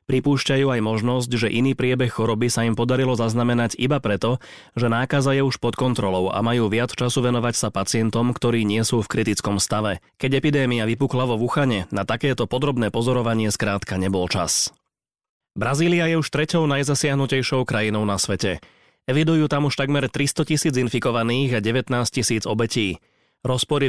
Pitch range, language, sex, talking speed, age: 110-135 Hz, Slovak, male, 160 wpm, 30-49